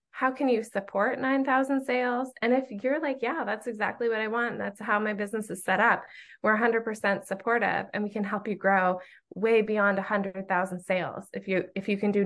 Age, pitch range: 20-39, 195-220 Hz